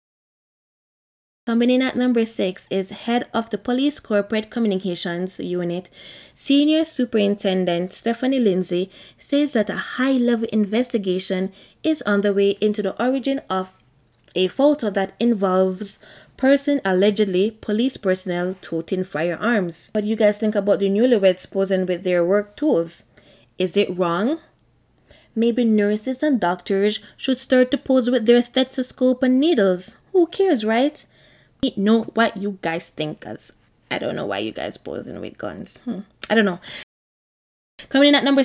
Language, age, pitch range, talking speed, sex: English, 20-39, 190-250 Hz, 150 wpm, female